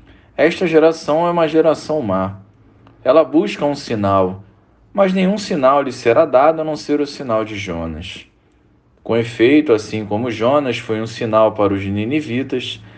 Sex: male